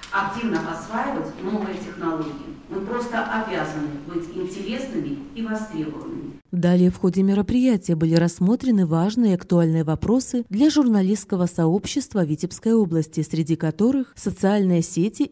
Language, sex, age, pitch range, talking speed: Russian, female, 30-49, 170-225 Hz, 120 wpm